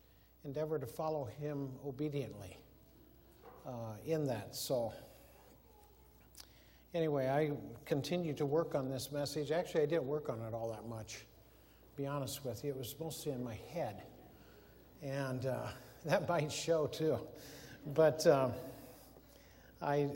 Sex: male